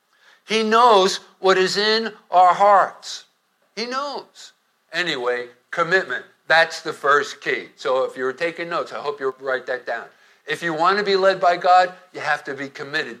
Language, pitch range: English, 150-200 Hz